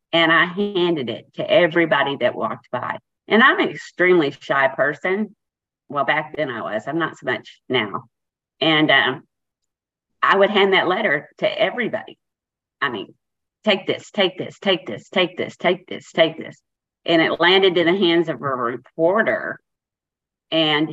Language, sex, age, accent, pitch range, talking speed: English, female, 40-59, American, 150-180 Hz, 165 wpm